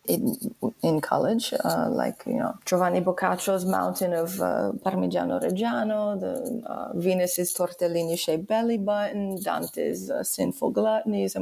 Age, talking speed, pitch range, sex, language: 30-49, 125 wpm, 175-205 Hz, female, English